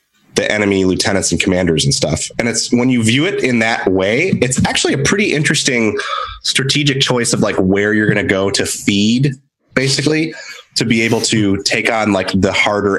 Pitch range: 95-125 Hz